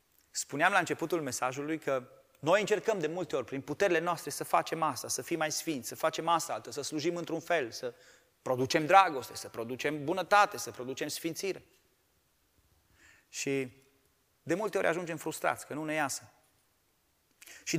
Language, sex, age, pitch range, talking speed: Romanian, male, 30-49, 135-185 Hz, 160 wpm